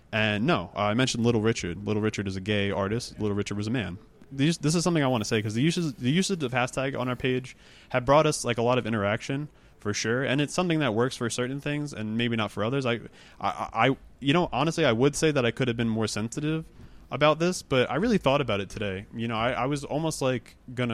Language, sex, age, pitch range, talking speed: English, male, 20-39, 105-130 Hz, 260 wpm